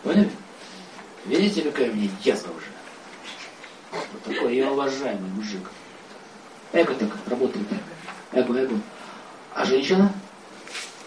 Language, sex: Russian, male